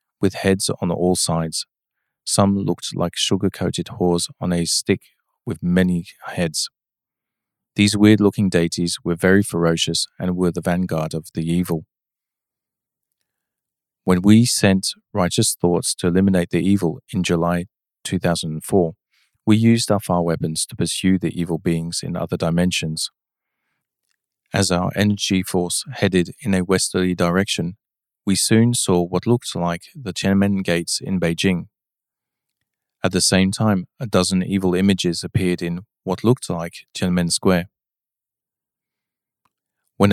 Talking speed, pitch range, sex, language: 135 wpm, 85-100 Hz, male, English